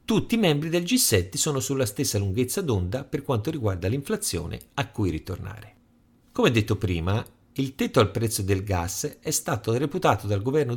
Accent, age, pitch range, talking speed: native, 50-69, 95-140 Hz, 175 wpm